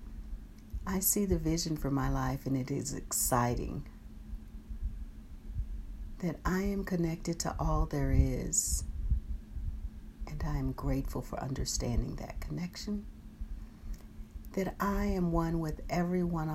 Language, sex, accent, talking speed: English, female, American, 120 wpm